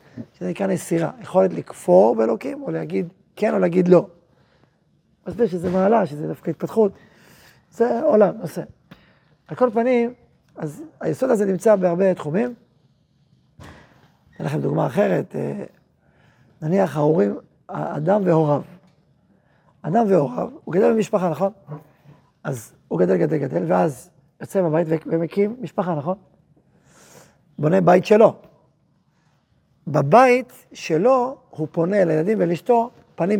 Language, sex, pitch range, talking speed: Hebrew, male, 160-210 Hz, 120 wpm